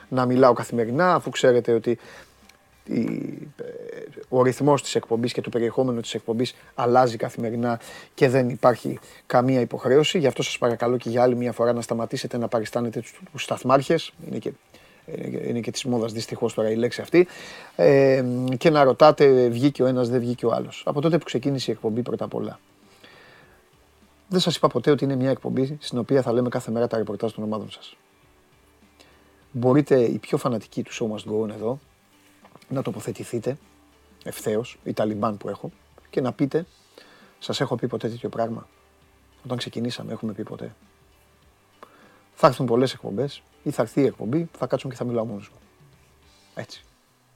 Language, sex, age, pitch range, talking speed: Greek, male, 30-49, 115-140 Hz, 165 wpm